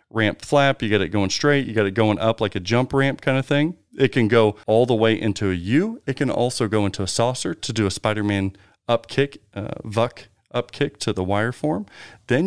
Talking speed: 240 wpm